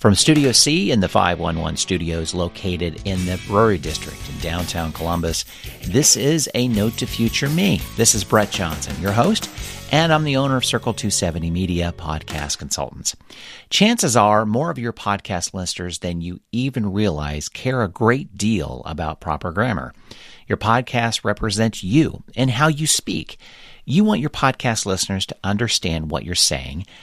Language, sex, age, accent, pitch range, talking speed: English, male, 50-69, American, 90-145 Hz, 165 wpm